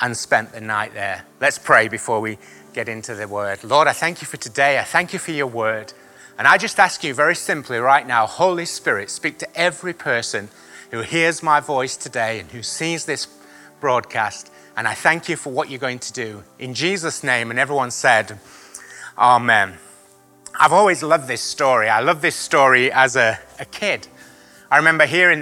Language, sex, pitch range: English, male, 125-165 Hz